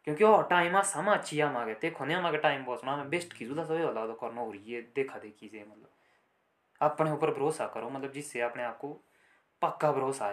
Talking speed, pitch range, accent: 150 wpm, 120-150 Hz, native